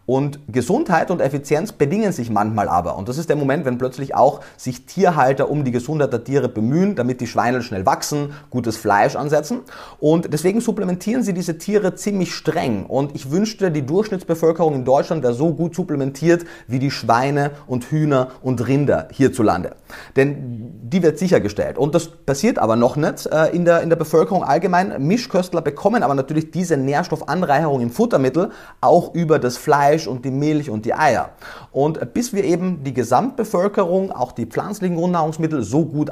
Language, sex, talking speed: German, male, 175 wpm